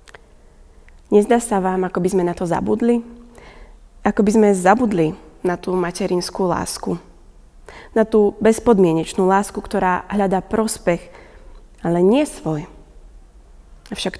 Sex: female